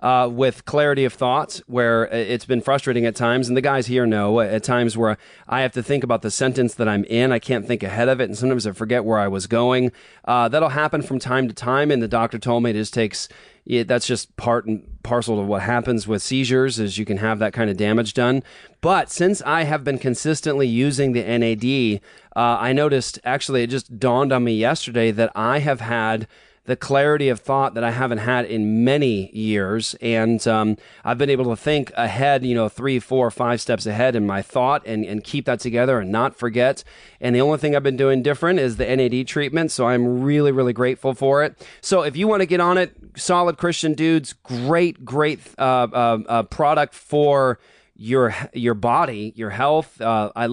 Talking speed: 215 wpm